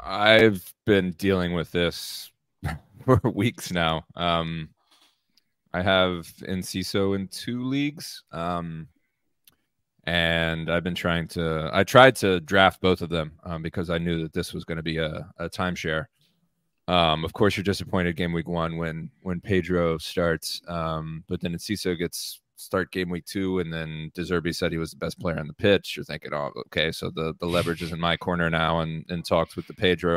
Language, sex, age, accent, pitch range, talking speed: English, male, 20-39, American, 85-95 Hz, 185 wpm